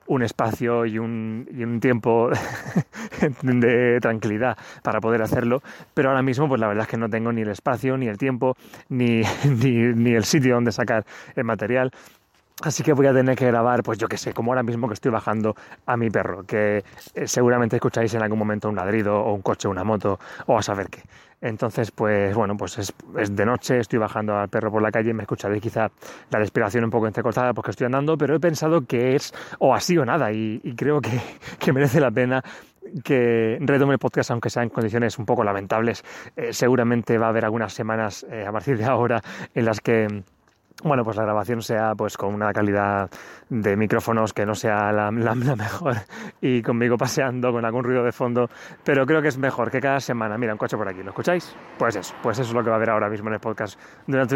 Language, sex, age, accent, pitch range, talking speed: Spanish, male, 30-49, Spanish, 110-130 Hz, 220 wpm